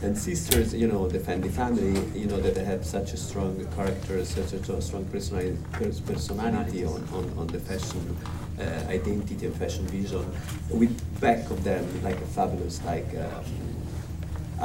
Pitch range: 80-100 Hz